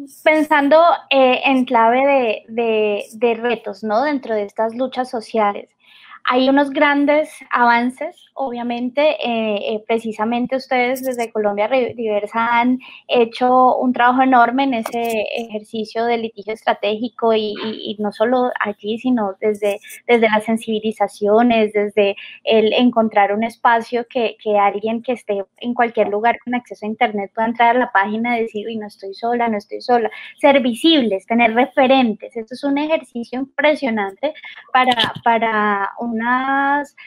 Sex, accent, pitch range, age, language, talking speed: female, Colombian, 225-270 Hz, 20-39, Spanish, 150 wpm